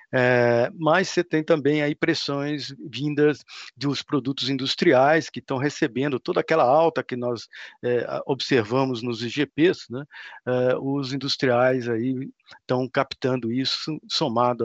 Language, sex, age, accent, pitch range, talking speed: Portuguese, male, 50-69, Brazilian, 115-140 Hz, 125 wpm